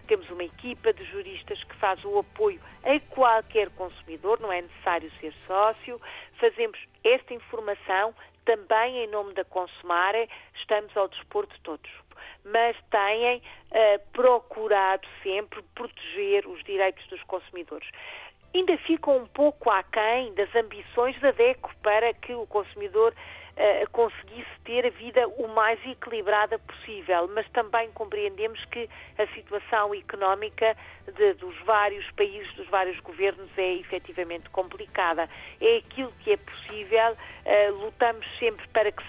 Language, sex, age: Portuguese, female, 40-59